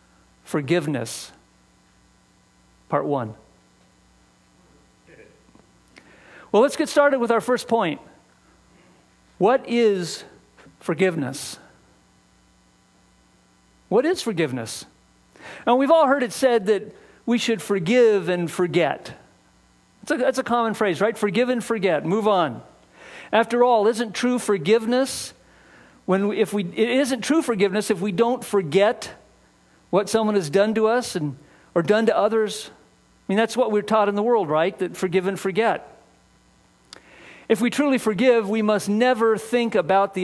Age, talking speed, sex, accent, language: 50-69, 140 wpm, male, American, English